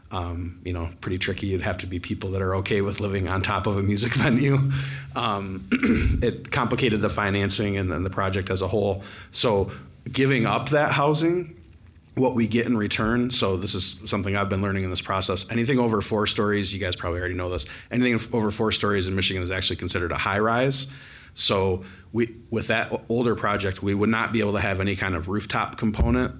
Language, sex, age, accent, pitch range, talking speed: English, male, 30-49, American, 90-110 Hz, 210 wpm